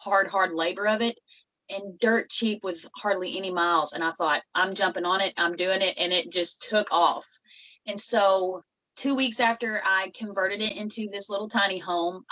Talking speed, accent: 195 wpm, American